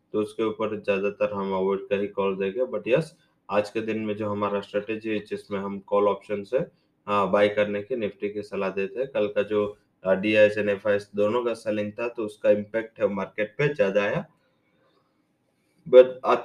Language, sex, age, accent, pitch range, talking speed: English, male, 20-39, Indian, 105-120 Hz, 180 wpm